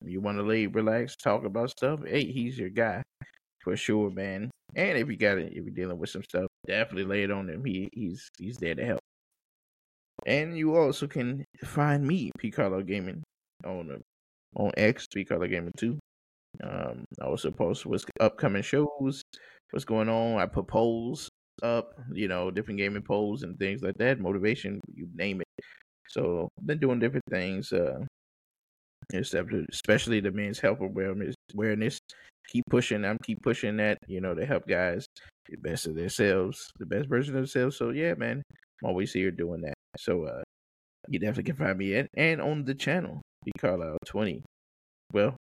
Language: English